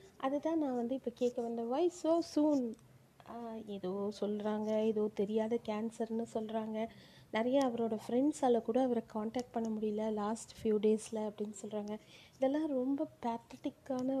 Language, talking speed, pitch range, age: Tamil, 130 wpm, 220-265 Hz, 30-49